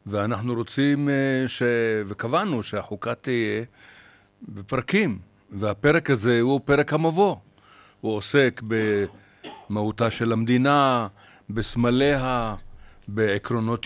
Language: Hebrew